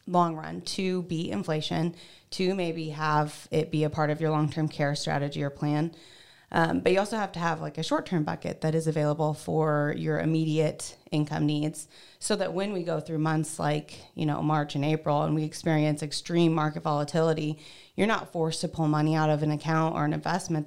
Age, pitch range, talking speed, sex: 30-49, 150-165 Hz, 205 wpm, female